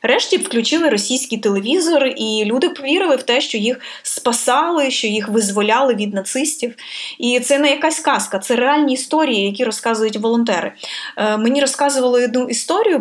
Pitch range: 210-270 Hz